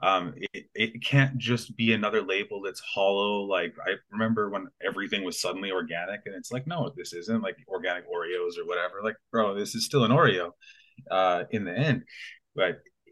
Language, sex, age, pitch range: English, male, 20-39, 95-150 Hz